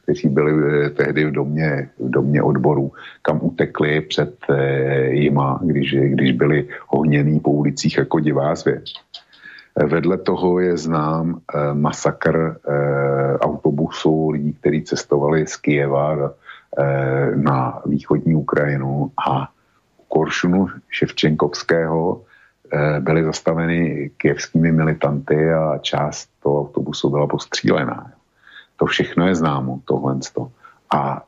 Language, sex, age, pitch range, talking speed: Slovak, male, 50-69, 70-80 Hz, 100 wpm